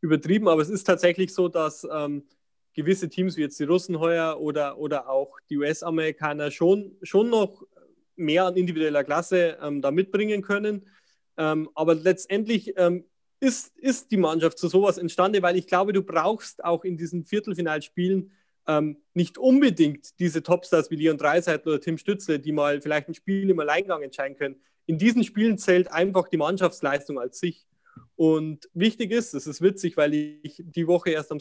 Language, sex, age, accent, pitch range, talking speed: German, male, 30-49, German, 150-185 Hz, 175 wpm